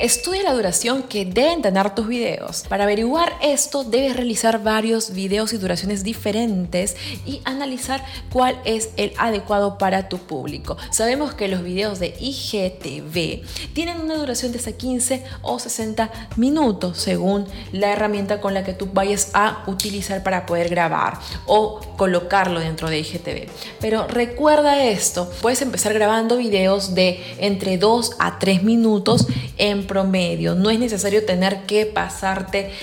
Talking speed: 150 wpm